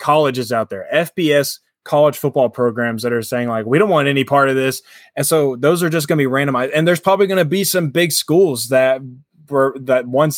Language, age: English, 20-39